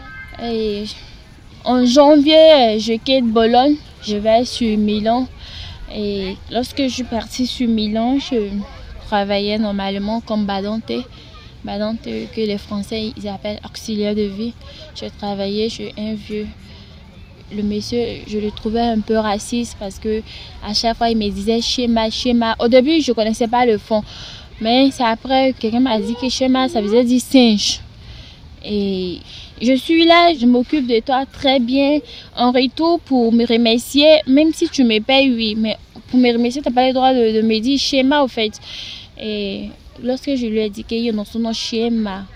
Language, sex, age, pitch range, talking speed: French, female, 20-39, 210-245 Hz, 175 wpm